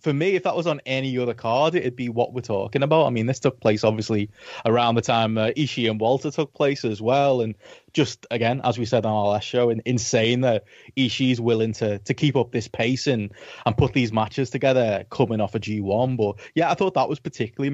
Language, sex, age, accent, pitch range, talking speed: English, male, 20-39, British, 105-130 Hz, 245 wpm